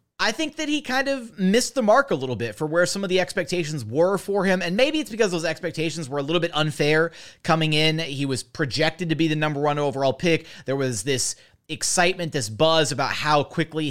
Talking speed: 230 wpm